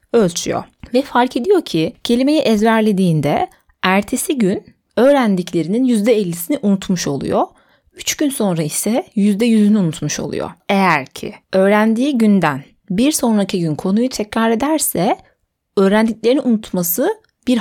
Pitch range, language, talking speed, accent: 175-240 Hz, Turkish, 110 wpm, native